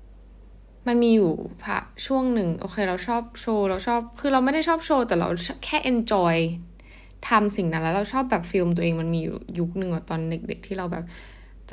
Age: 10-29